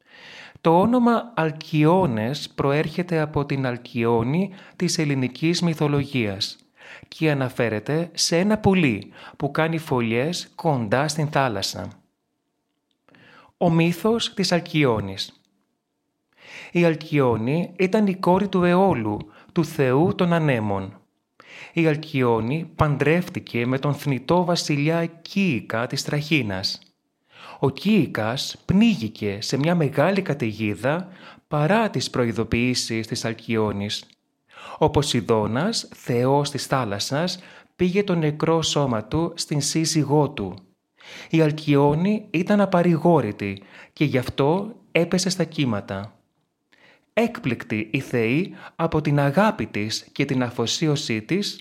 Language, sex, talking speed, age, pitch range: Greek, male, 105 wpm, 30-49, 120-170 Hz